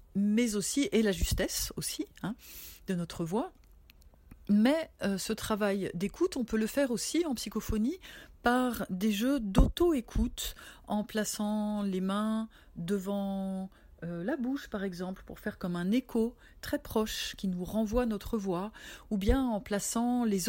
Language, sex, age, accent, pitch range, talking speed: French, female, 40-59, French, 195-245 Hz, 155 wpm